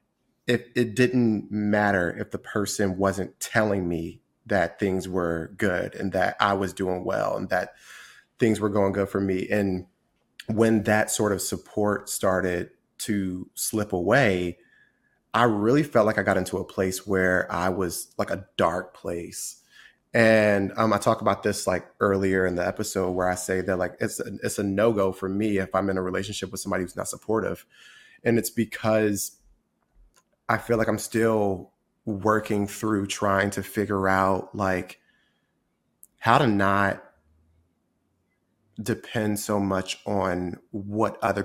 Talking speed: 160 wpm